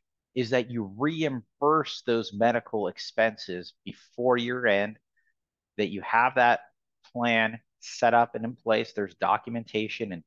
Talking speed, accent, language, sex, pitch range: 135 wpm, American, English, male, 95-115 Hz